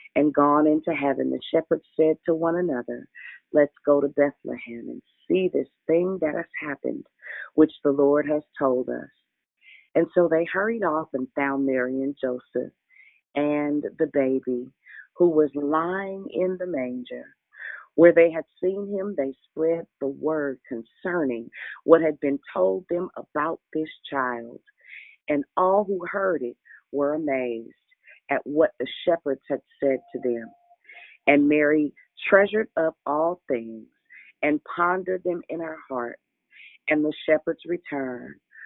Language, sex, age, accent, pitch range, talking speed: English, female, 40-59, American, 135-165 Hz, 145 wpm